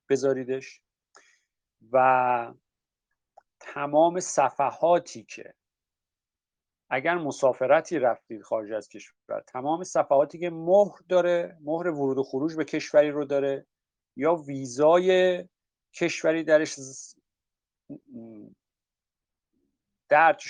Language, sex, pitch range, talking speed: Persian, male, 130-170 Hz, 85 wpm